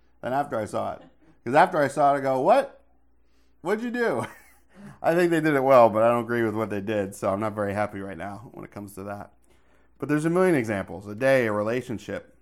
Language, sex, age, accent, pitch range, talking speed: English, male, 40-59, American, 100-130 Hz, 245 wpm